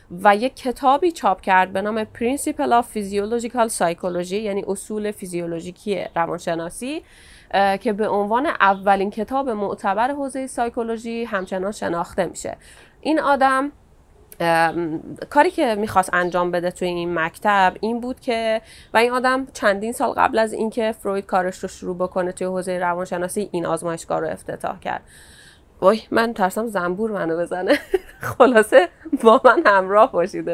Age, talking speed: 30-49, 140 wpm